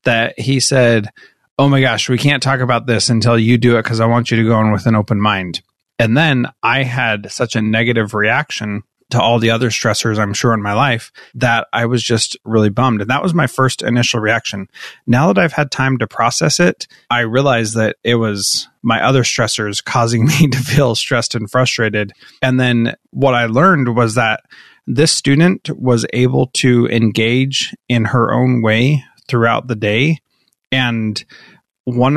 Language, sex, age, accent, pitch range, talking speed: English, male, 30-49, American, 115-130 Hz, 190 wpm